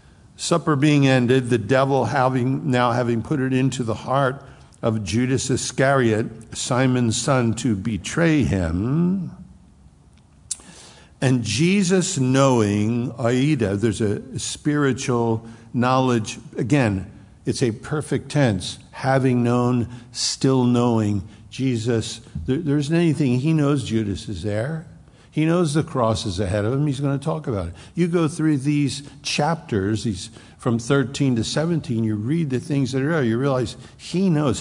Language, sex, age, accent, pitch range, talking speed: English, male, 60-79, American, 115-145 Hz, 140 wpm